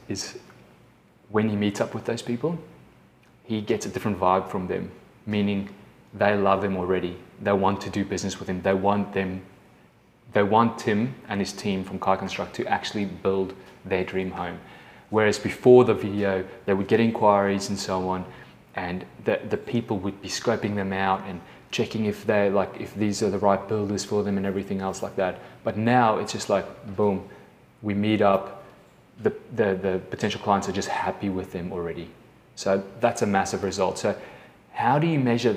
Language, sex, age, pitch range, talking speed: English, male, 20-39, 95-105 Hz, 190 wpm